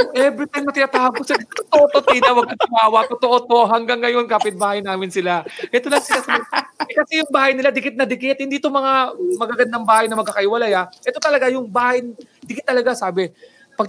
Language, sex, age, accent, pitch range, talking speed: English, male, 20-39, Filipino, 195-280 Hz, 180 wpm